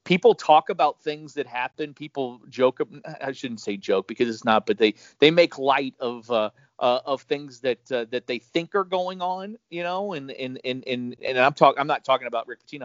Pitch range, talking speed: 125-175 Hz, 225 wpm